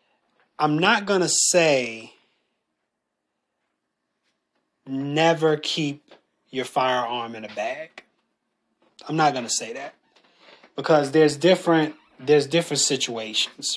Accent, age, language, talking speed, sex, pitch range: American, 30-49, English, 105 wpm, male, 130-160 Hz